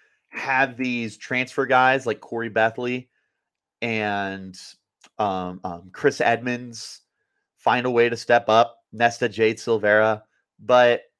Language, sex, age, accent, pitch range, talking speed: English, male, 30-49, American, 105-130 Hz, 120 wpm